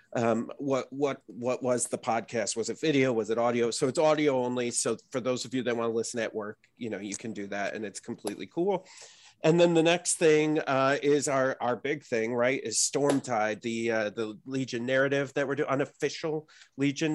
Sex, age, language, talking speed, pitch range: male, 30-49, English, 215 wpm, 115-145 Hz